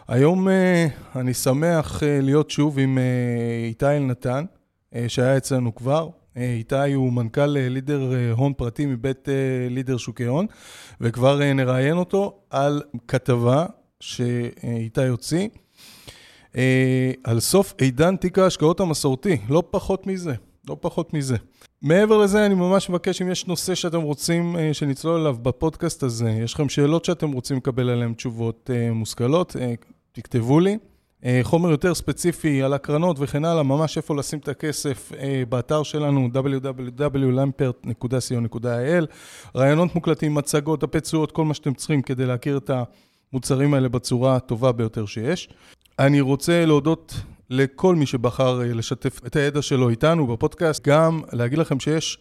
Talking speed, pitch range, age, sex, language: 130 wpm, 125-160 Hz, 20-39, male, Hebrew